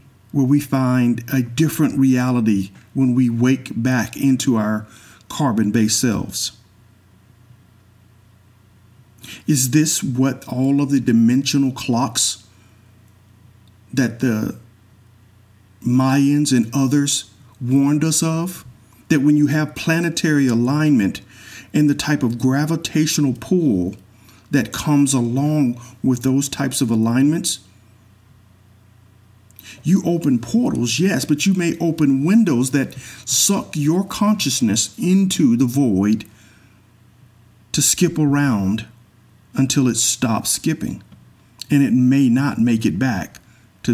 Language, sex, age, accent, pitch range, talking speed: English, male, 50-69, American, 110-140 Hz, 110 wpm